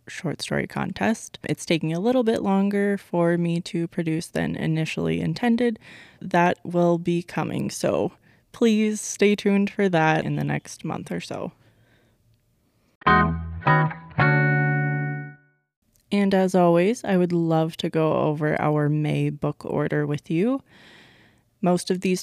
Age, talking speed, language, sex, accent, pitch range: 20-39, 135 wpm, English, female, American, 150-195 Hz